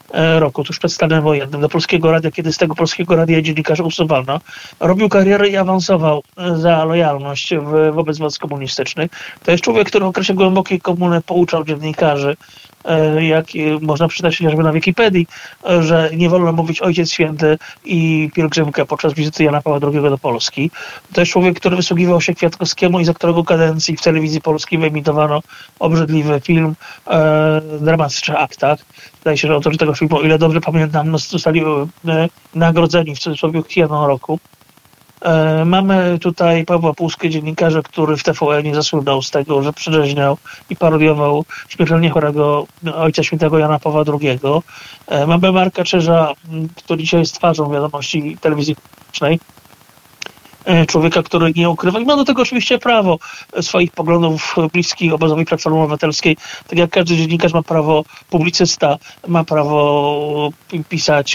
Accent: native